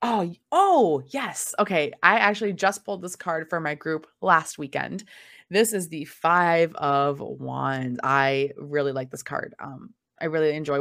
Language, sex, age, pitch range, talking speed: English, female, 20-39, 145-195 Hz, 165 wpm